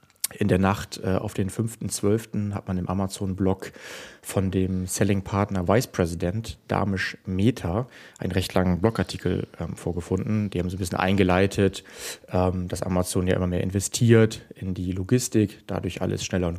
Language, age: German, 30-49